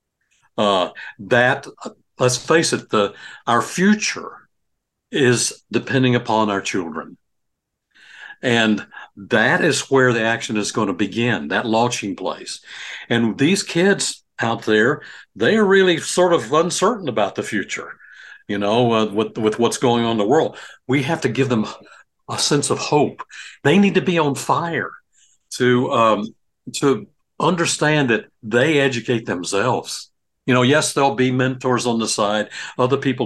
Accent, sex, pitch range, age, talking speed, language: American, male, 115-155 Hz, 60-79, 155 wpm, English